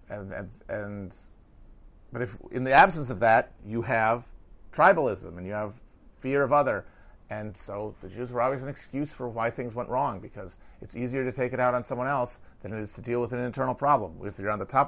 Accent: American